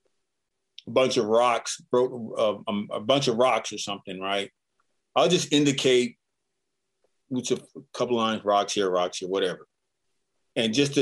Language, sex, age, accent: English, male, 30-49, American